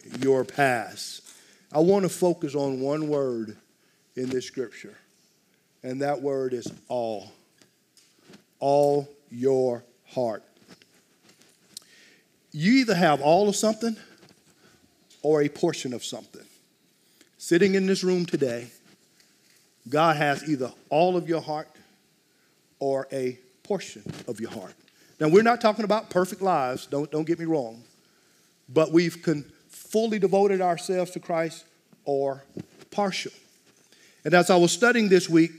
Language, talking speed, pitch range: English, 130 wpm, 140-180 Hz